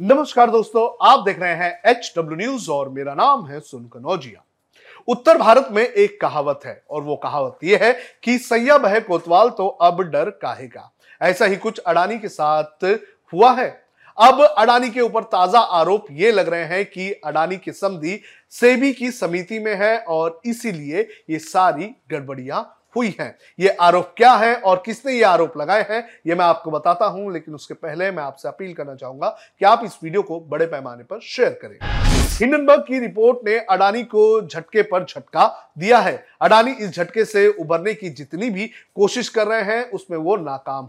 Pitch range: 165-235 Hz